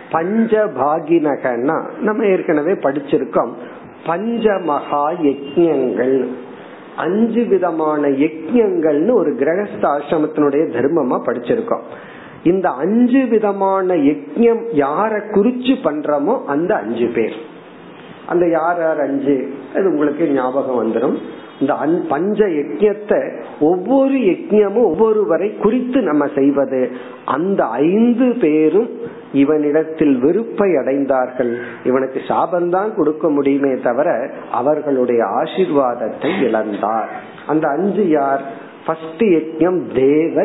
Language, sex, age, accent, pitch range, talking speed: Tamil, male, 50-69, native, 140-210 Hz, 80 wpm